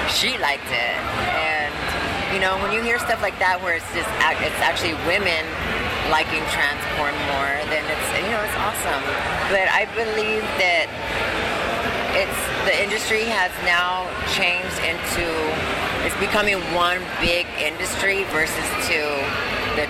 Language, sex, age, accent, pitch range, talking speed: English, female, 30-49, American, 155-195 Hz, 140 wpm